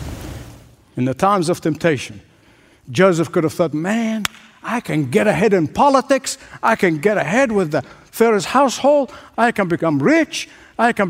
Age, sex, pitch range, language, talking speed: 60-79, male, 155-225 Hz, English, 160 wpm